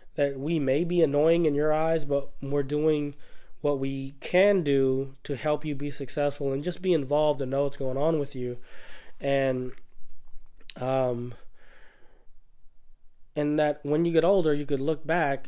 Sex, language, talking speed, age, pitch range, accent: male, English, 165 wpm, 20-39, 130-150 Hz, American